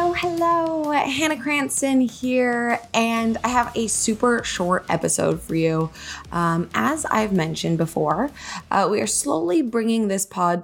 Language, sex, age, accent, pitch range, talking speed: English, female, 20-39, American, 170-225 Hz, 150 wpm